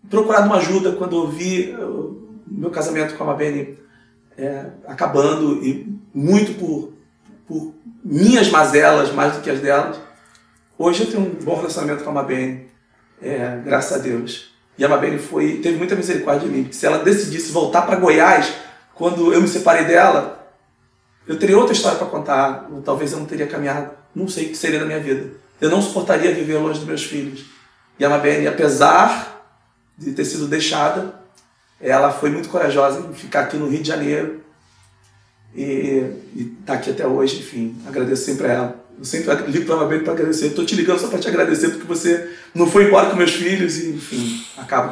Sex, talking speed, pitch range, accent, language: male, 185 wpm, 140-175 Hz, Brazilian, Portuguese